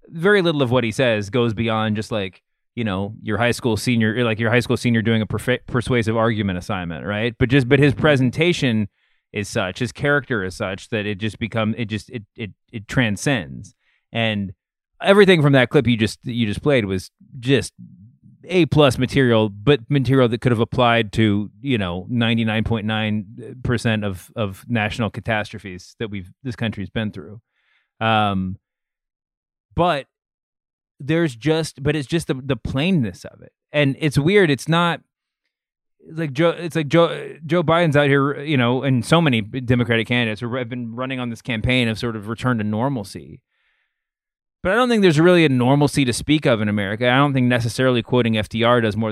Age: 30-49